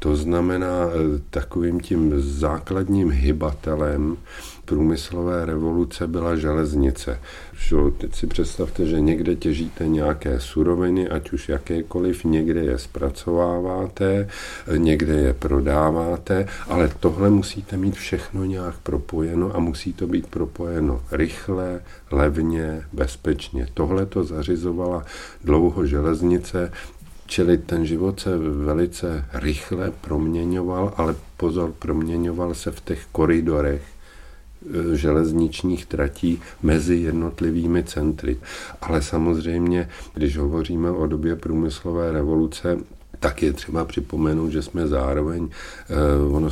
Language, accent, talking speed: Czech, native, 105 wpm